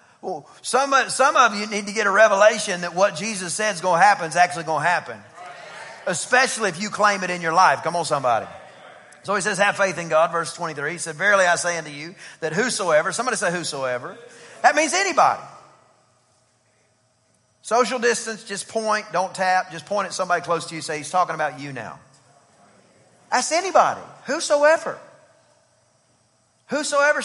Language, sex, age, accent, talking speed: English, male, 40-59, American, 180 wpm